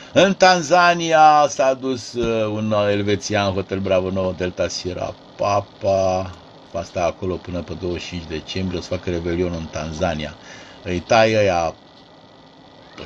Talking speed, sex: 135 wpm, male